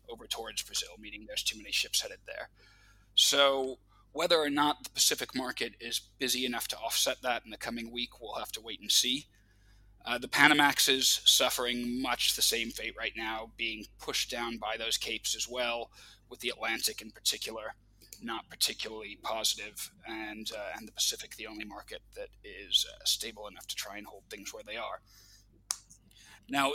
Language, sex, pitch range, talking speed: English, male, 105-130 Hz, 185 wpm